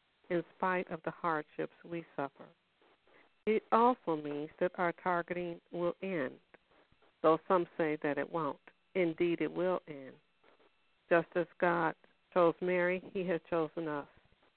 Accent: American